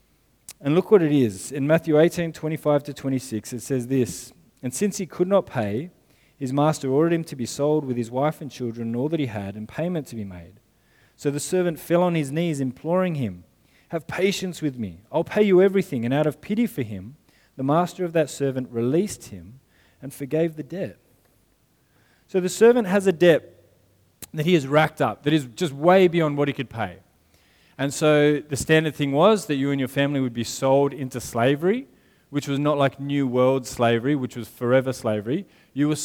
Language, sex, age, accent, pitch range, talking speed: English, male, 20-39, Australian, 125-160 Hz, 205 wpm